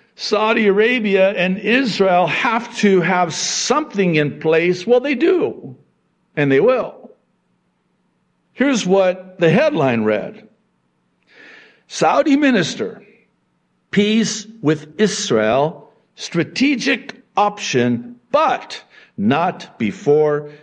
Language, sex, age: English, male, 60-79